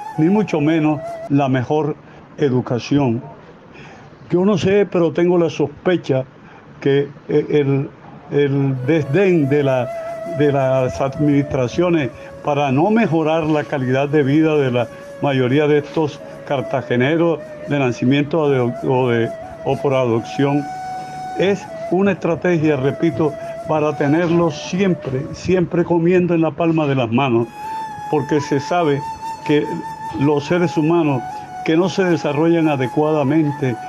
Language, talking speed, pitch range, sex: Spanish, 125 wpm, 140-170 Hz, male